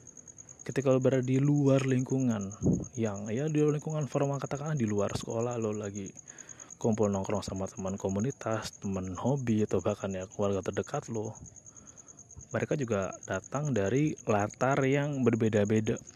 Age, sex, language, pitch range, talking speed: 30-49, male, Indonesian, 110-140 Hz, 135 wpm